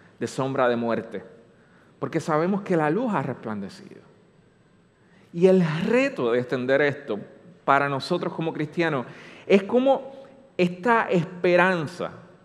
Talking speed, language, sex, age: 120 wpm, Spanish, male, 40-59